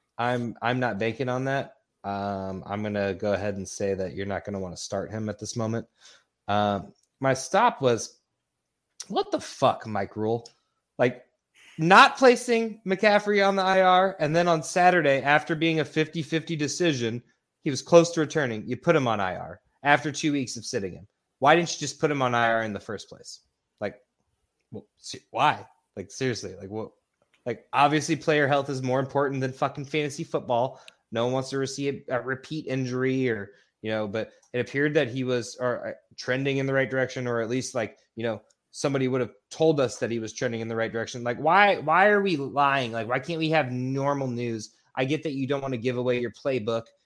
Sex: male